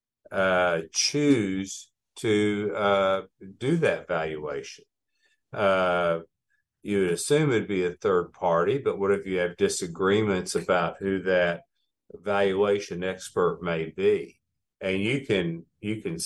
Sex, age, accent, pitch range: male, 50-69, American, 90-100 Hz